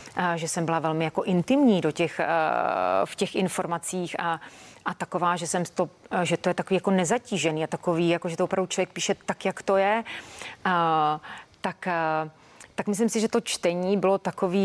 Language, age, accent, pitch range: Czech, 30-49, native, 170-190 Hz